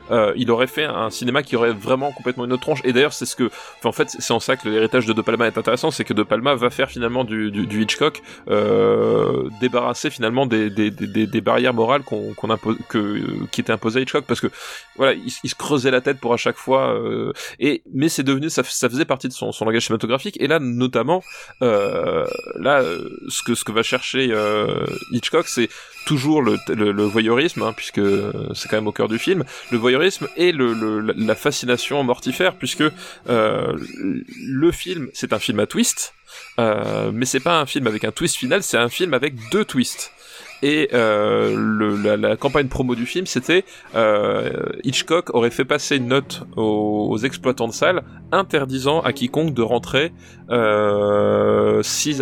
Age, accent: 20-39, French